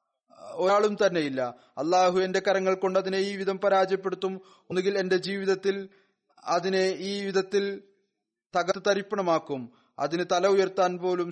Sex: male